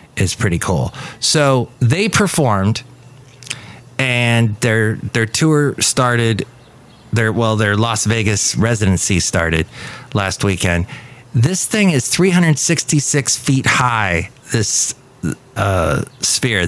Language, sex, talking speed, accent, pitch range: English, male, 115 wpm, American, 110-135 Hz